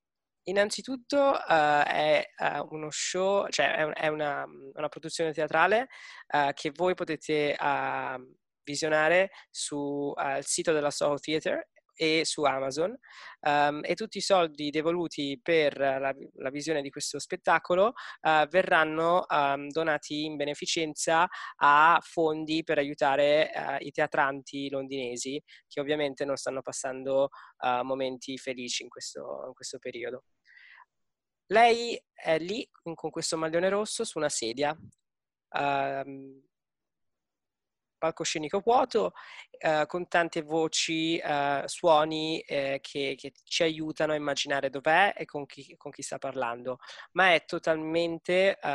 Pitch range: 140-170 Hz